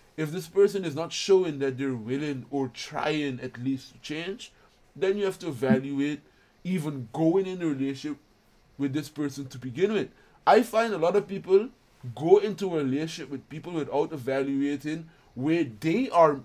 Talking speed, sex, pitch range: 175 wpm, male, 140-190 Hz